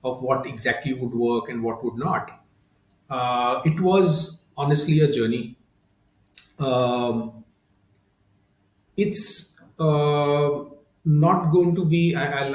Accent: Indian